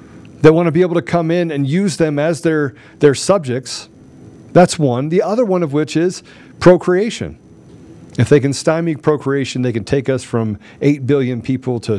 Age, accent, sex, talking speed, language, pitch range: 50-69, American, male, 190 wpm, English, 110-145 Hz